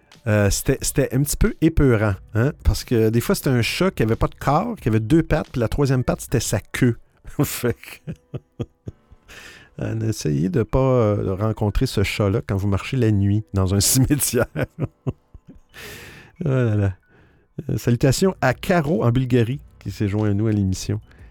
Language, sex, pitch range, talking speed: French, male, 100-125 Hz, 170 wpm